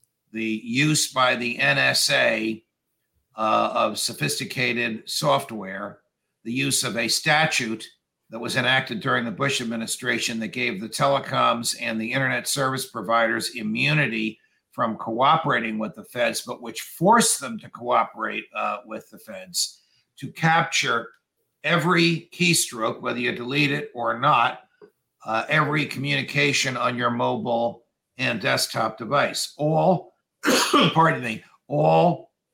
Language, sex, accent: English, male, American